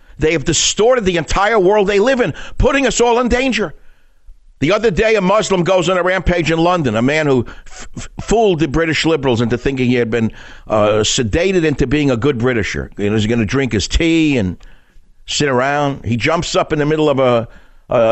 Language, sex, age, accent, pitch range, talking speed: English, male, 60-79, American, 115-180 Hz, 220 wpm